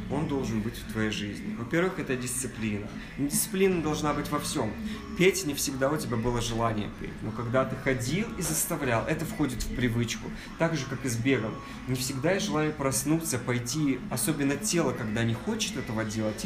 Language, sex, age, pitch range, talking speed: Russian, male, 20-39, 115-160 Hz, 185 wpm